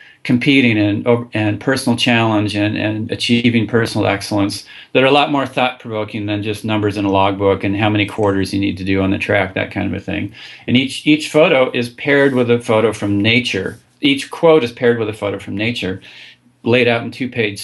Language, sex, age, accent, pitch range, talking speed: English, male, 40-59, American, 105-125 Hz, 210 wpm